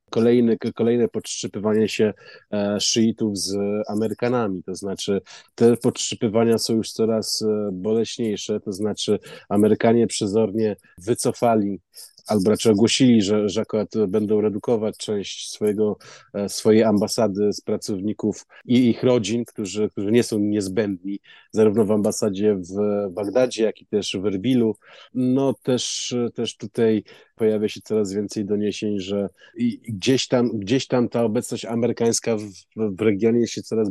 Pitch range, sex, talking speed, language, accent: 105-115 Hz, male, 130 wpm, Polish, native